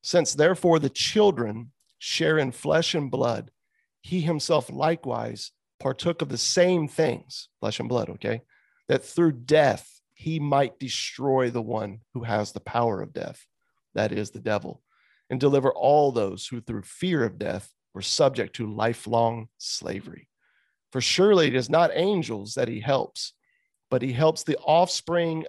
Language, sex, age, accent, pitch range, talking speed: English, male, 40-59, American, 125-170 Hz, 160 wpm